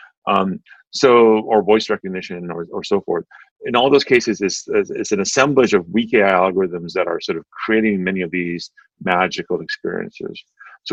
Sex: male